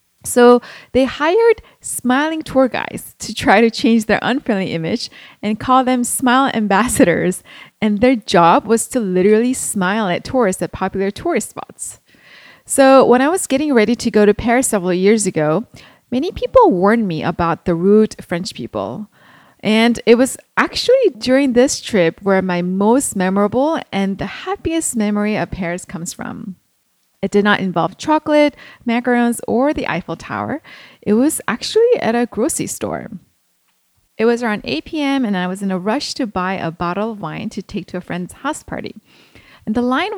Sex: female